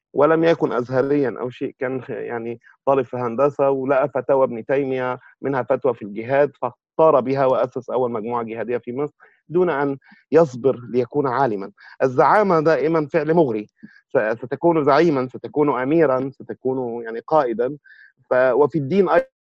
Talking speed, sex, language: 140 wpm, male, Arabic